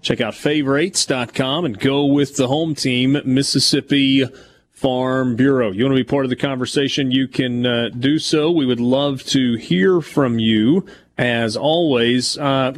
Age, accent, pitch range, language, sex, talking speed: 40-59, American, 125-150 Hz, English, male, 165 wpm